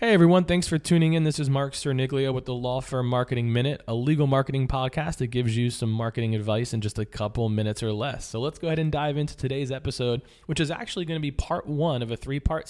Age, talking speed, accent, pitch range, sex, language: 20-39, 245 wpm, American, 110-135 Hz, male, English